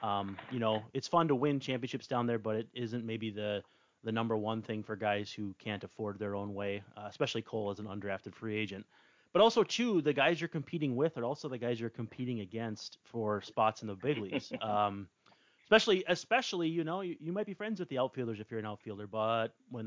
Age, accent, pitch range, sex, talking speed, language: 30-49, American, 110-140 Hz, male, 225 wpm, English